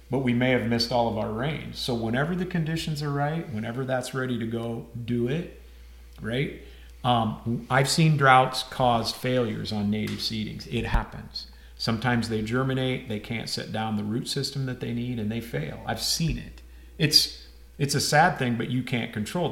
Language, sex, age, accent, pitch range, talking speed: English, male, 40-59, American, 110-130 Hz, 190 wpm